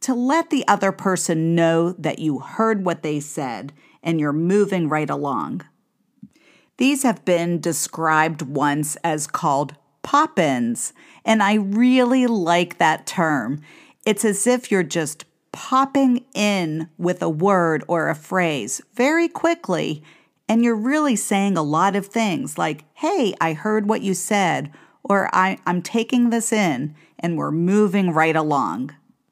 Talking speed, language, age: 145 wpm, English, 50-69